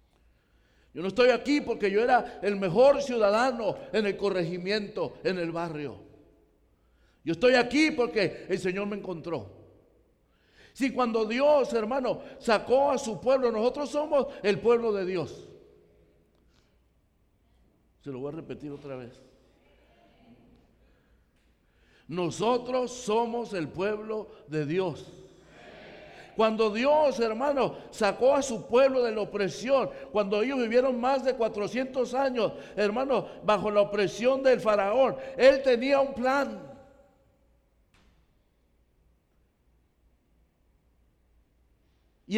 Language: English